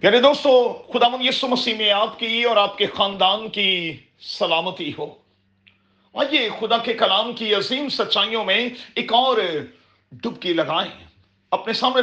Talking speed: 145 wpm